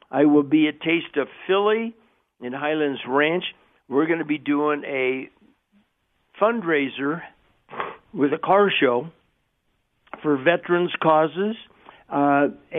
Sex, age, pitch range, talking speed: male, 60-79, 145-180 Hz, 115 wpm